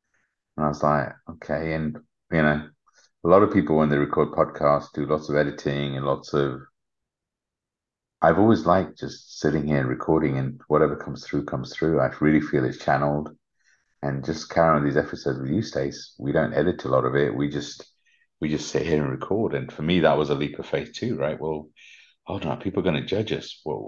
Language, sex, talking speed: English, male, 215 wpm